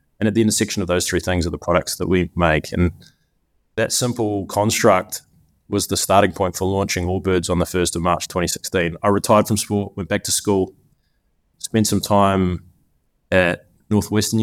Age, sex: 20-39, male